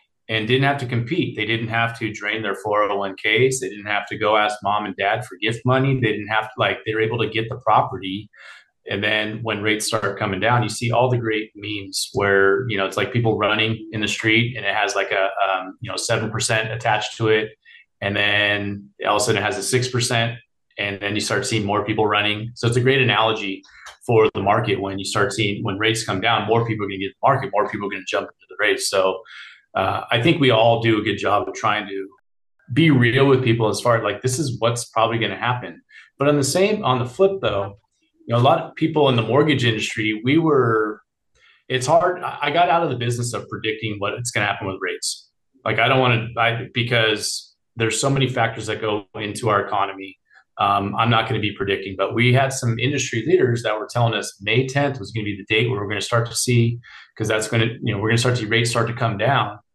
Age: 30-49